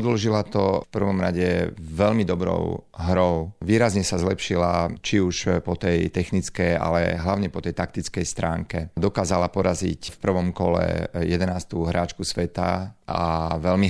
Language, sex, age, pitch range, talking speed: Slovak, male, 40-59, 85-95 Hz, 140 wpm